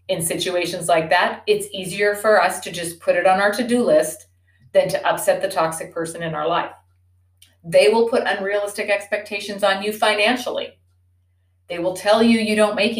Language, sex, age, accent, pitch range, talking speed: English, female, 40-59, American, 140-210 Hz, 190 wpm